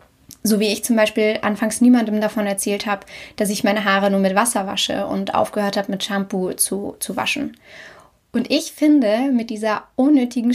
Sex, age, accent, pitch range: female, 10-29, German, 205-250 Hz